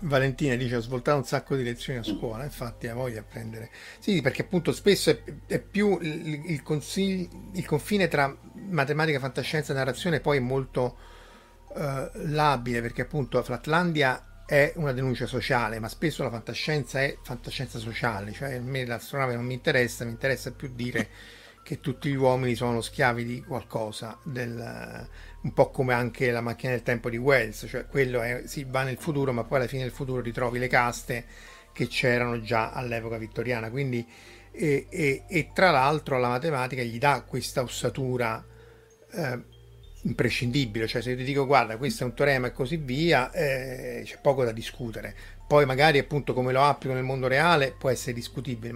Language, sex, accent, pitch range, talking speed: Italian, male, native, 120-140 Hz, 180 wpm